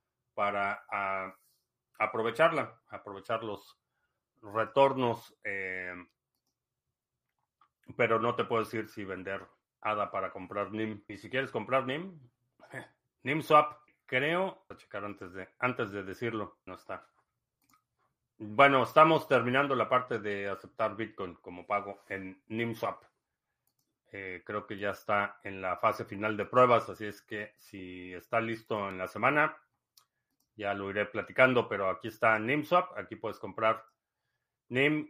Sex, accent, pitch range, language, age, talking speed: male, Mexican, 100-130 Hz, Spanish, 40-59, 135 wpm